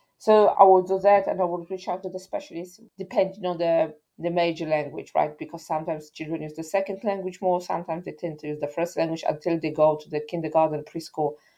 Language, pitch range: English, 175-230 Hz